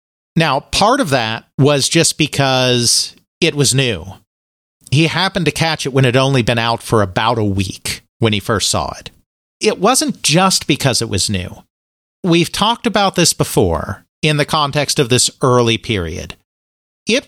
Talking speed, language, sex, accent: 175 wpm, English, male, American